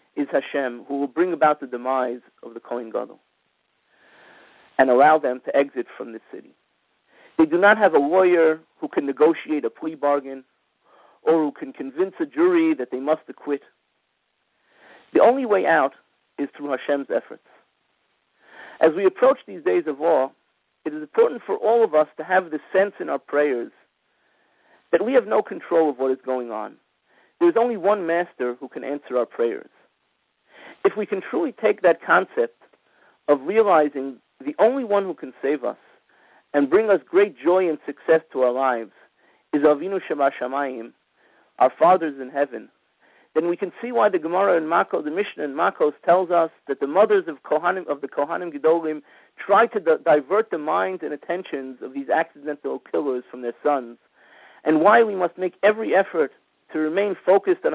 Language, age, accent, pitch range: English, 50-69, American, 140-195 Hz